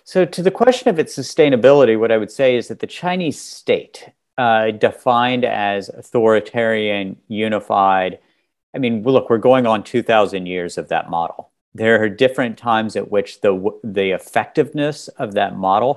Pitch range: 100-130 Hz